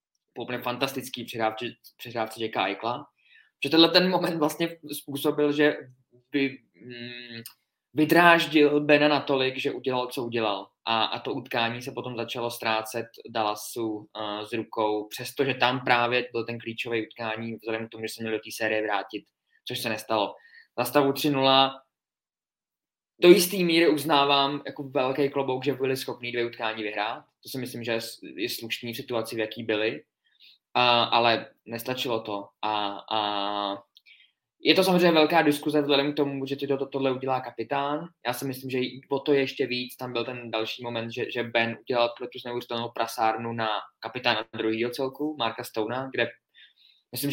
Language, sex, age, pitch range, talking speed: Czech, male, 20-39, 115-135 Hz, 160 wpm